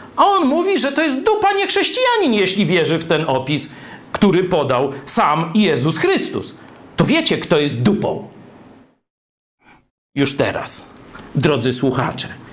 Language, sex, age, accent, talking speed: Polish, male, 50-69, native, 135 wpm